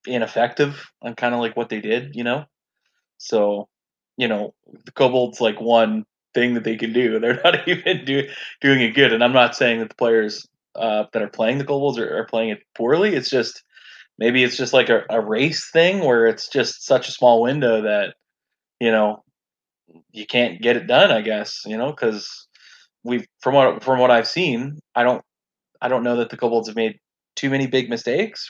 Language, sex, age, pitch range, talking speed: English, male, 20-39, 115-140 Hz, 205 wpm